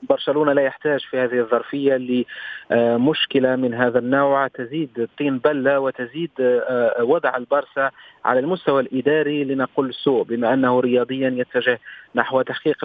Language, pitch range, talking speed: Arabic, 125-150 Hz, 125 wpm